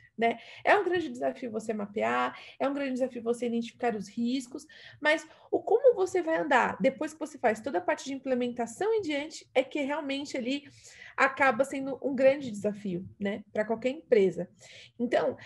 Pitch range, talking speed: 235-320 Hz, 180 wpm